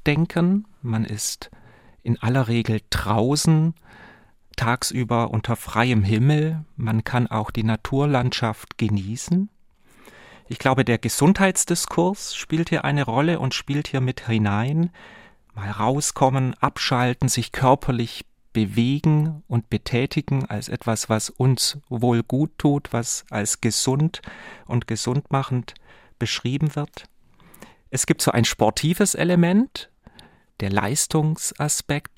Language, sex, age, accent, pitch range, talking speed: German, male, 40-59, German, 115-155 Hz, 115 wpm